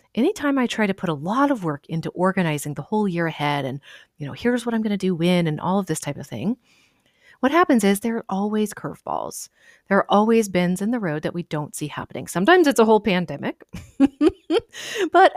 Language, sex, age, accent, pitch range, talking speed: English, female, 30-49, American, 165-235 Hz, 225 wpm